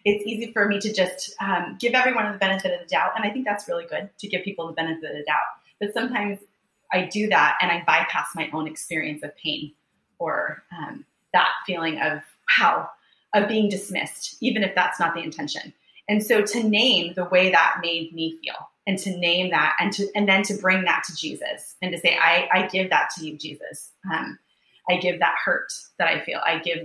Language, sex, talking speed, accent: English, female, 220 wpm, American